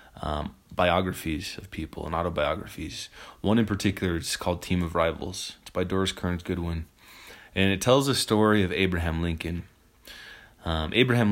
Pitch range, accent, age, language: 85-100 Hz, American, 20-39, English